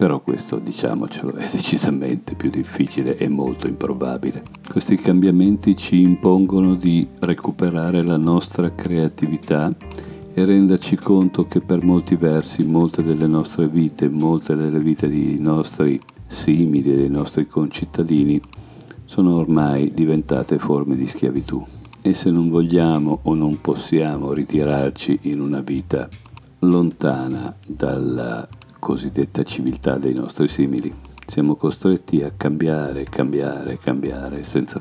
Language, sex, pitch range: Italian, male, 70-90 Hz